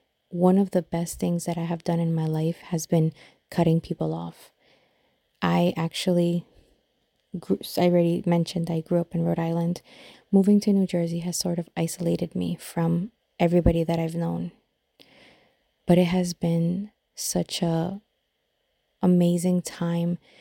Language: English